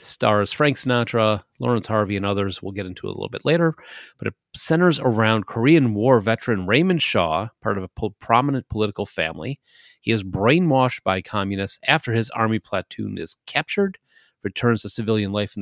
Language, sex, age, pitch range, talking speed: English, male, 30-49, 105-135 Hz, 175 wpm